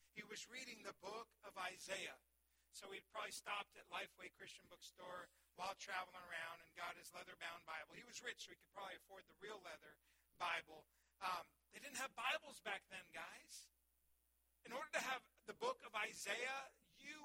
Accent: American